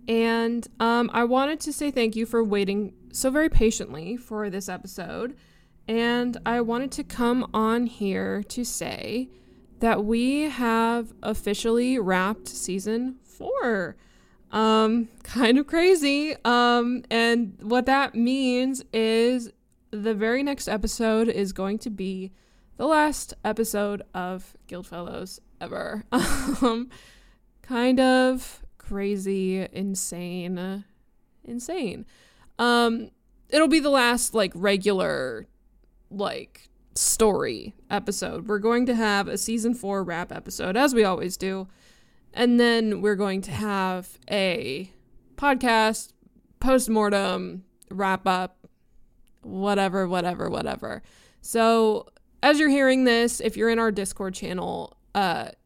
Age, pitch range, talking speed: 20-39, 200-240 Hz, 120 wpm